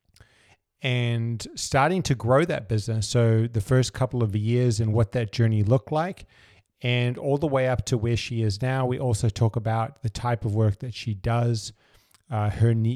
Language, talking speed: English, 190 wpm